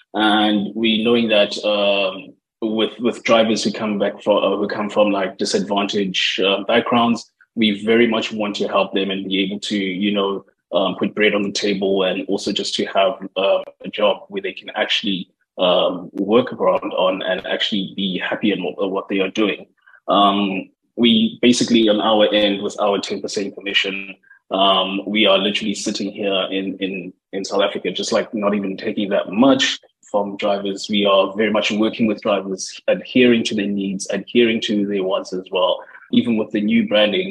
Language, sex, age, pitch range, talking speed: English, male, 20-39, 100-110 Hz, 190 wpm